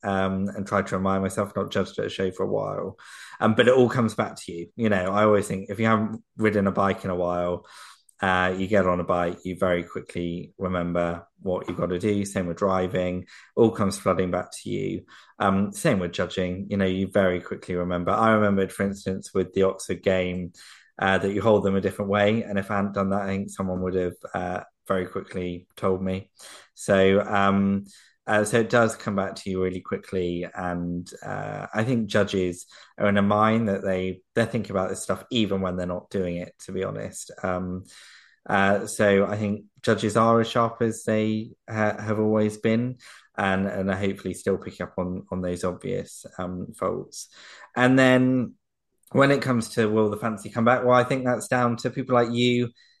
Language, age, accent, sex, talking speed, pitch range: English, 20-39, British, male, 210 wpm, 95-110 Hz